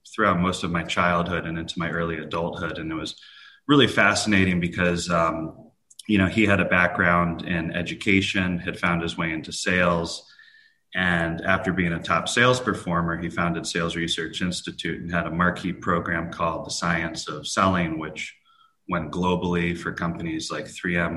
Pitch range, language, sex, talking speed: 85-100 Hz, English, male, 170 wpm